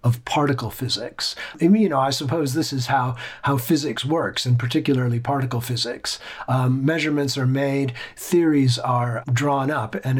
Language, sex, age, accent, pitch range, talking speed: English, male, 40-59, American, 120-155 Hz, 165 wpm